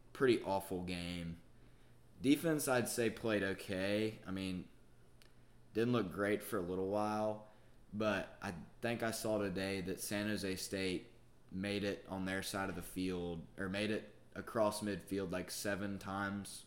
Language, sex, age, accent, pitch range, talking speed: English, male, 20-39, American, 90-105 Hz, 155 wpm